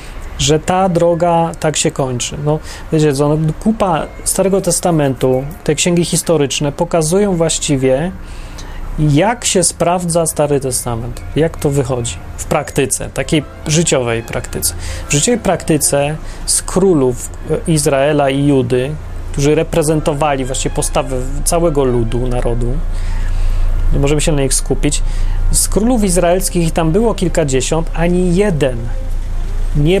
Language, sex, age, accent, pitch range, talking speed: Polish, male, 30-49, native, 120-170 Hz, 125 wpm